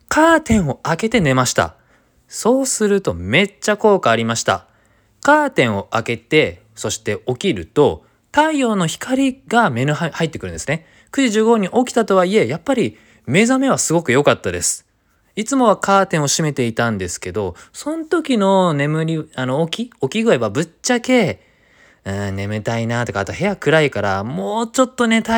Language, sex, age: Japanese, male, 20-39